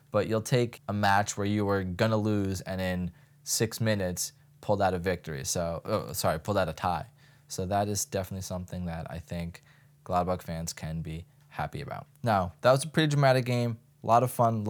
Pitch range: 95-130 Hz